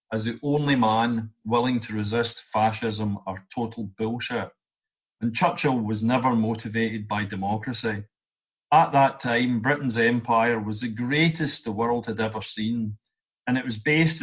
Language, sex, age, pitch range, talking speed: English, male, 40-59, 110-125 Hz, 150 wpm